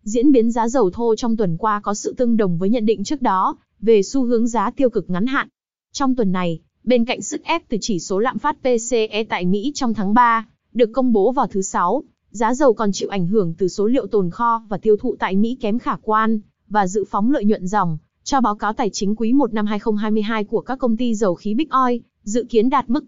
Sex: female